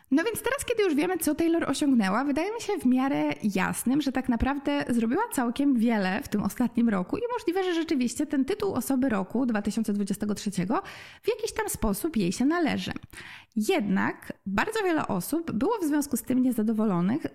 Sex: female